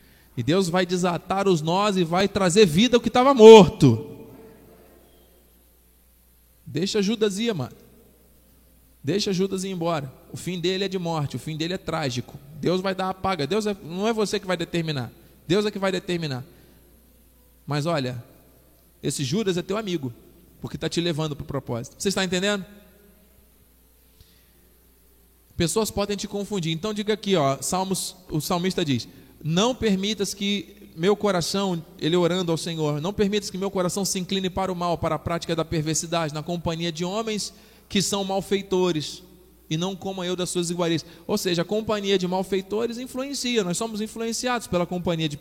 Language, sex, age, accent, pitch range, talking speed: Portuguese, male, 20-39, Brazilian, 145-195 Hz, 175 wpm